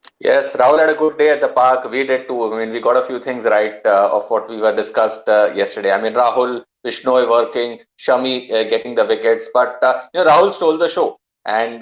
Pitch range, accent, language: 120-145 Hz, Indian, English